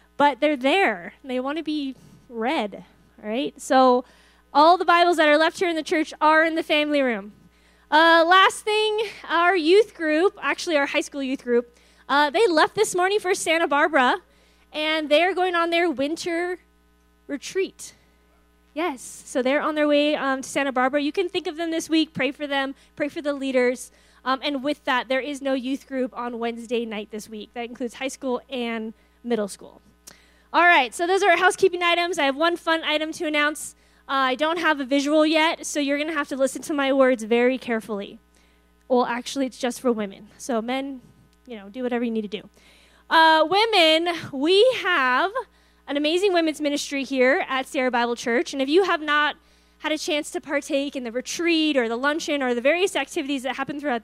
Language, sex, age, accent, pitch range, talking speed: English, female, 10-29, American, 250-325 Hz, 205 wpm